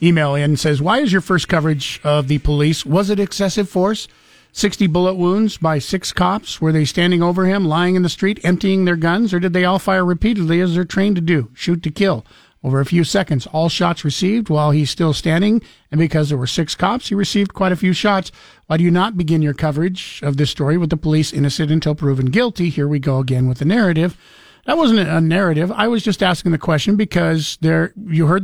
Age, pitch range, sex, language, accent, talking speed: 50-69, 150-180 Hz, male, English, American, 225 wpm